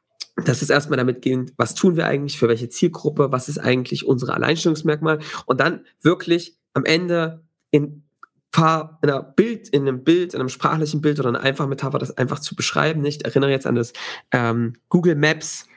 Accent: German